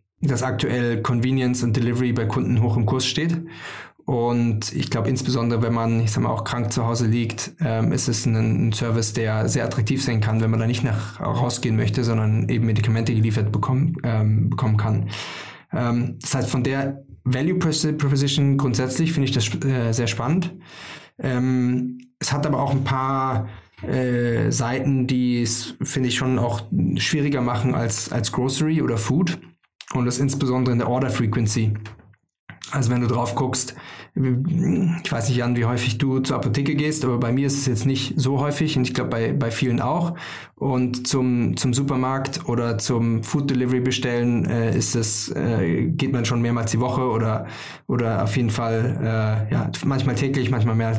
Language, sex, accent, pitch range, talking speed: German, male, German, 115-135 Hz, 180 wpm